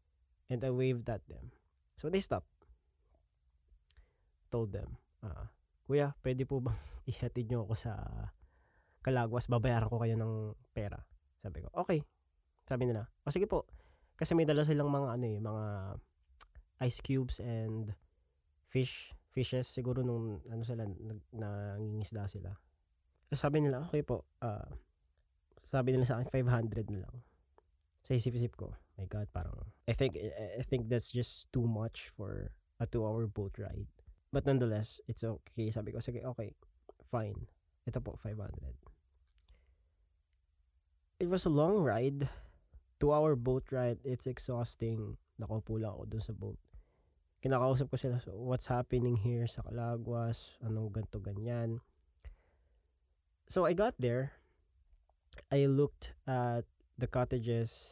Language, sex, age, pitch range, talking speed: English, male, 20-39, 80-125 Hz, 135 wpm